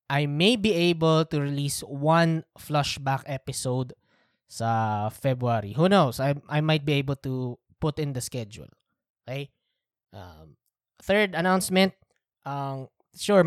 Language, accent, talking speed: Filipino, native, 130 wpm